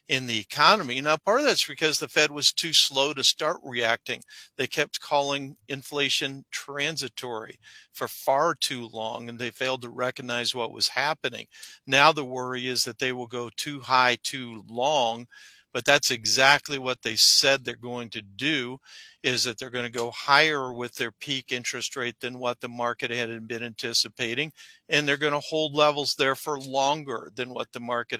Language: English